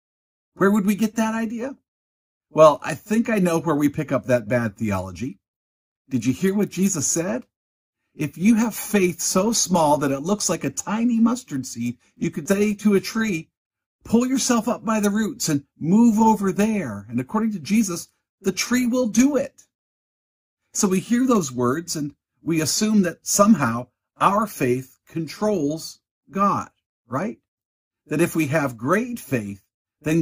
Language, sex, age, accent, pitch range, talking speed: English, male, 50-69, American, 125-200 Hz, 170 wpm